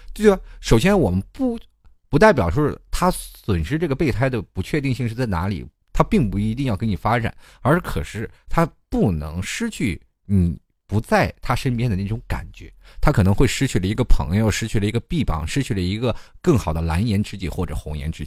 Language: Chinese